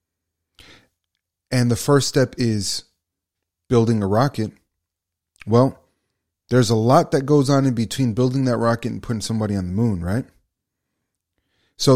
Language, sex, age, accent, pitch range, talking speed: English, male, 30-49, American, 95-130 Hz, 140 wpm